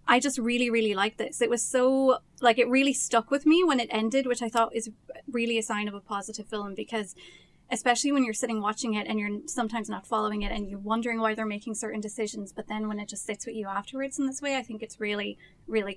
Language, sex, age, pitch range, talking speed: English, female, 20-39, 210-245 Hz, 250 wpm